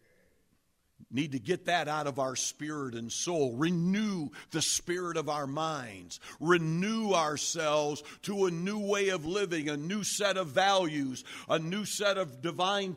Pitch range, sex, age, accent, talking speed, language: 155-230 Hz, male, 60-79, American, 155 wpm, English